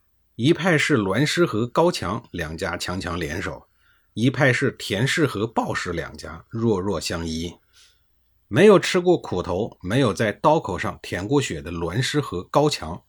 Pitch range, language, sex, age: 90-130 Hz, Chinese, male, 50-69